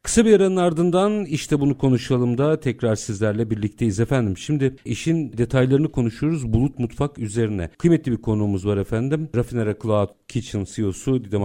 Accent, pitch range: native, 115-160 Hz